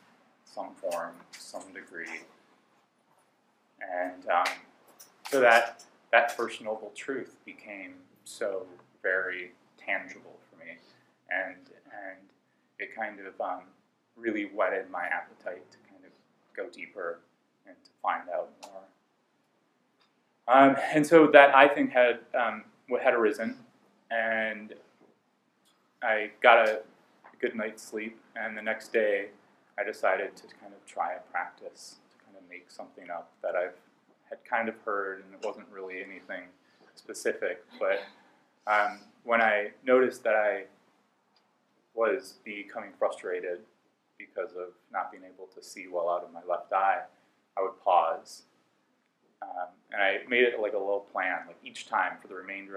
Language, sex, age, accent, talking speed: English, male, 30-49, American, 145 wpm